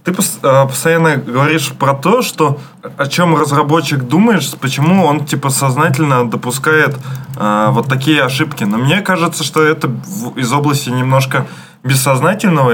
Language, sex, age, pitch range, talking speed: Russian, male, 20-39, 125-155 Hz, 130 wpm